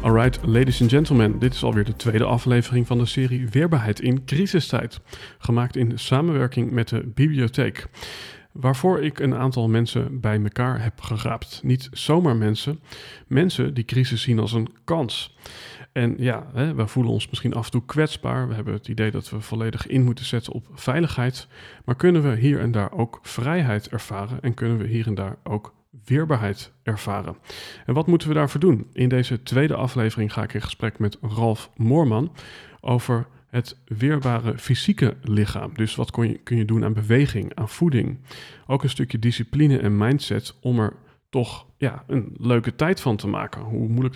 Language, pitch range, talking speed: Dutch, 110-130 Hz, 175 wpm